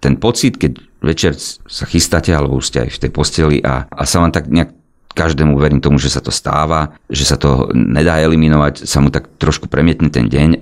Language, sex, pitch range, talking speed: Slovak, male, 75-100 Hz, 215 wpm